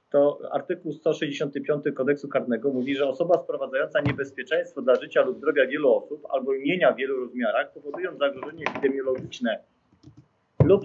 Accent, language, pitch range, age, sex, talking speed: native, Polish, 130-170 Hz, 30-49, male, 140 wpm